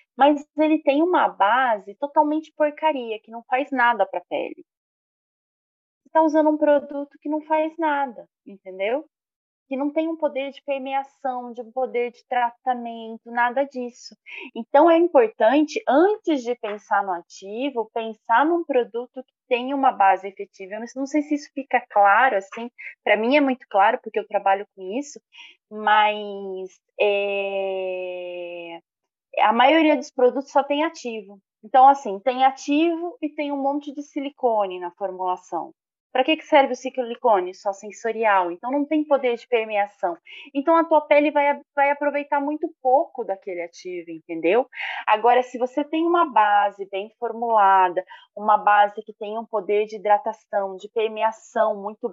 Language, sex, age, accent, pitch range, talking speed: Portuguese, female, 20-39, Brazilian, 205-290 Hz, 160 wpm